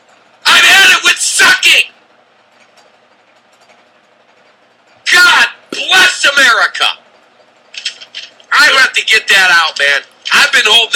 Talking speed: 100 wpm